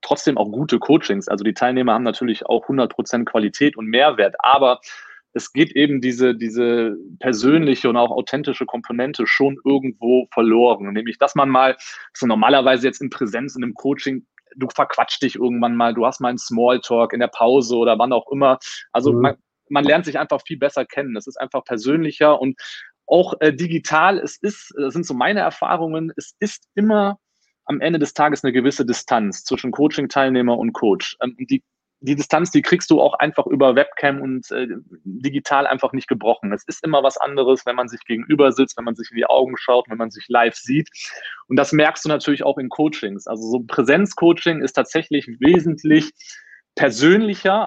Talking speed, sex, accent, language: 190 wpm, male, German, German